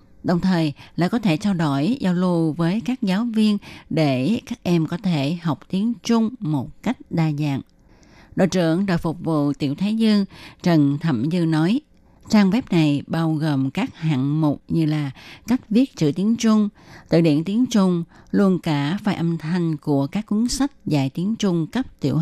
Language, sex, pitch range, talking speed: Vietnamese, female, 150-200 Hz, 190 wpm